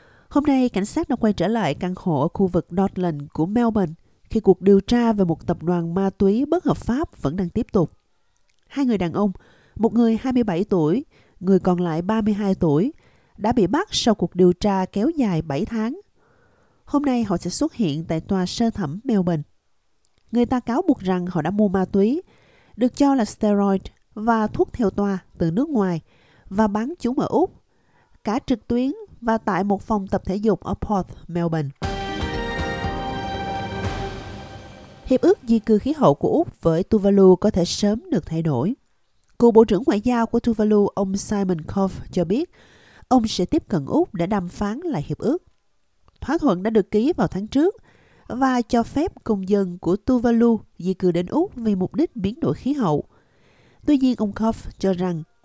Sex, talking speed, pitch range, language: female, 195 wpm, 180-240 Hz, Vietnamese